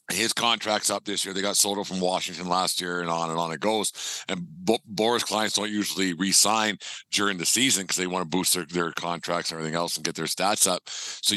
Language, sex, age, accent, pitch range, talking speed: English, male, 50-69, American, 95-110 Hz, 245 wpm